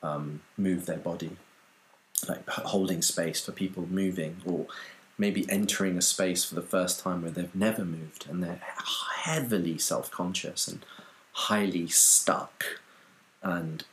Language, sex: English, male